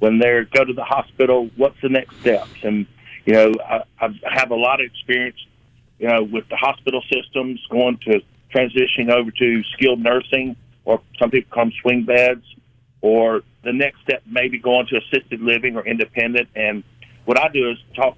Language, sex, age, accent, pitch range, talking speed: English, male, 50-69, American, 115-130 Hz, 190 wpm